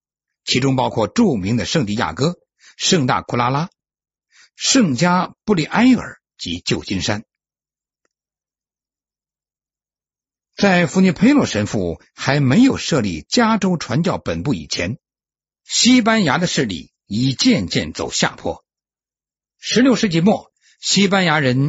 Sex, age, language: male, 60-79, Chinese